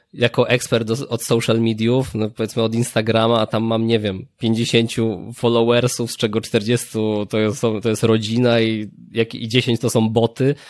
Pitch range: 100-115 Hz